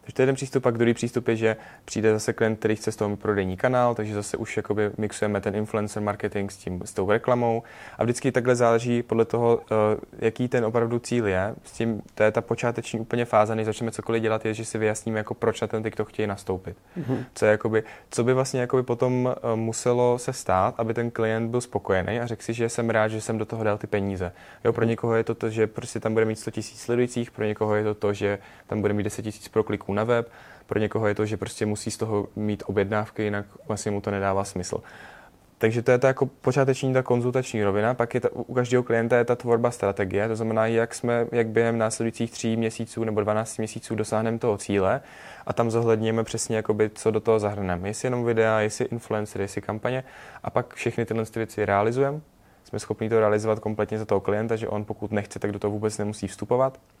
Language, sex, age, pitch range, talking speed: Czech, male, 20-39, 105-120 Hz, 220 wpm